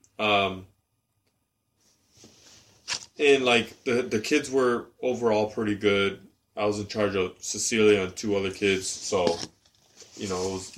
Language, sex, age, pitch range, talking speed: English, male, 20-39, 100-120 Hz, 145 wpm